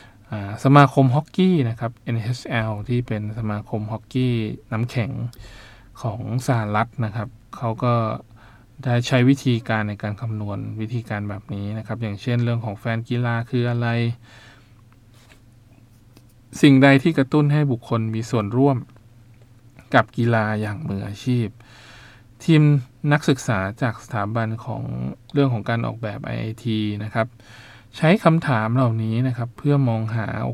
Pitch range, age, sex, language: 110-125 Hz, 20-39, male, Thai